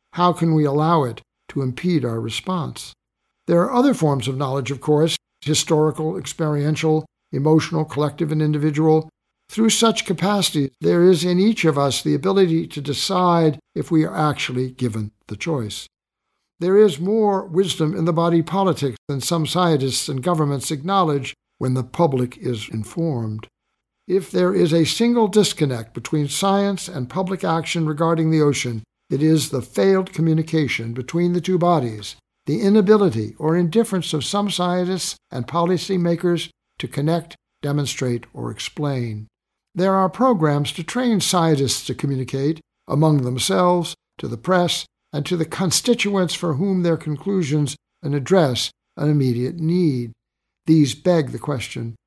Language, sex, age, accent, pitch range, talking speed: English, male, 60-79, American, 135-180 Hz, 150 wpm